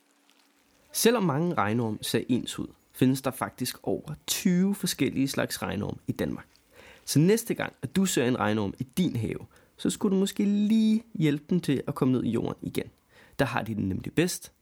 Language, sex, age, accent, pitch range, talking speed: Danish, male, 30-49, native, 120-175 Hz, 195 wpm